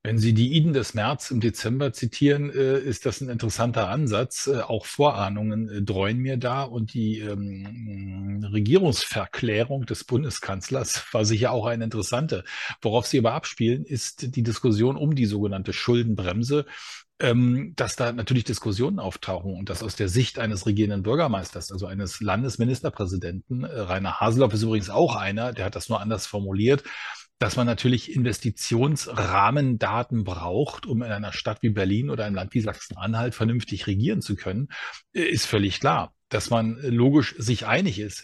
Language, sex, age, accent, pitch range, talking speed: German, male, 40-59, German, 105-130 Hz, 155 wpm